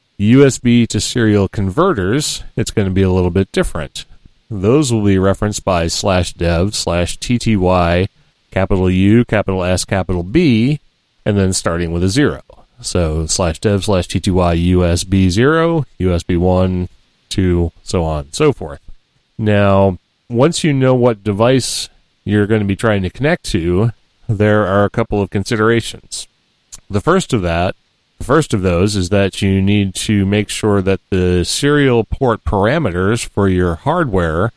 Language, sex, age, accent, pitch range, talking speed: English, male, 30-49, American, 90-110 Hz, 160 wpm